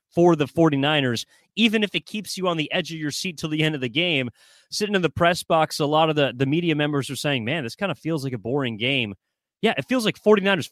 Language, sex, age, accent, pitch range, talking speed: English, male, 30-49, American, 140-185 Hz, 270 wpm